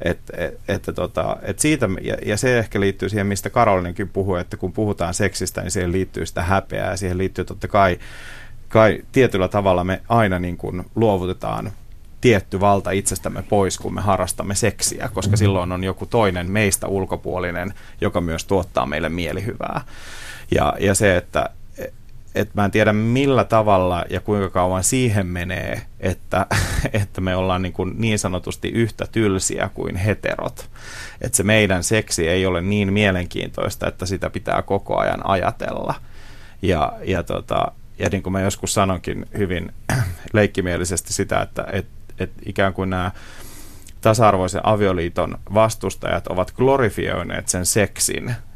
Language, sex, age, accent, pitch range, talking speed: Finnish, male, 30-49, native, 90-105 Hz, 145 wpm